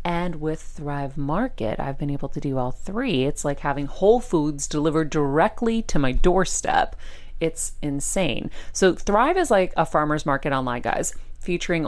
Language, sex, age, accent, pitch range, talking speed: English, female, 30-49, American, 130-155 Hz, 165 wpm